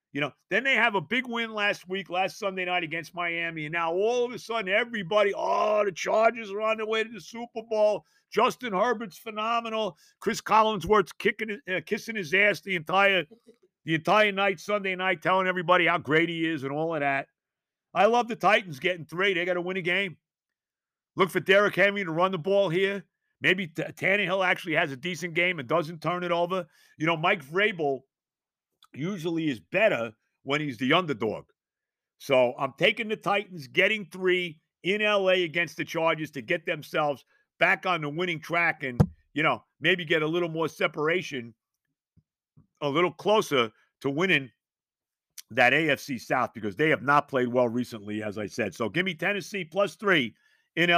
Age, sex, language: 50-69, male, English